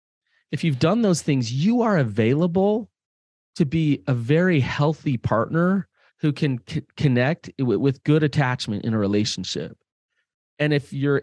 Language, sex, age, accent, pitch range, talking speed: English, male, 30-49, American, 110-145 Hz, 145 wpm